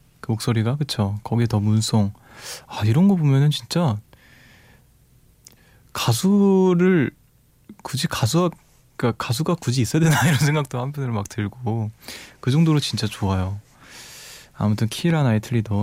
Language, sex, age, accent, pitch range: Korean, male, 20-39, native, 110-145 Hz